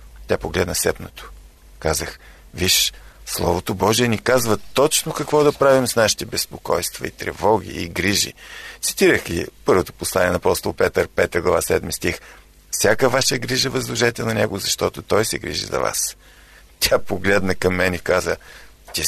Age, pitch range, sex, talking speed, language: 50-69, 95-150 Hz, male, 155 wpm, Bulgarian